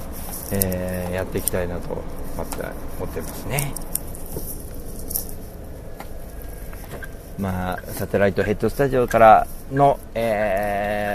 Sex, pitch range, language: male, 85-110 Hz, Japanese